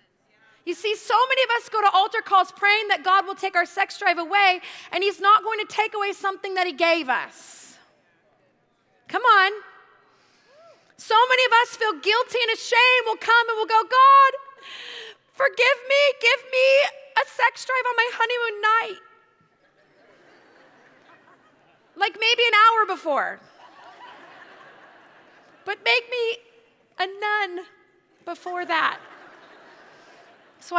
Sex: female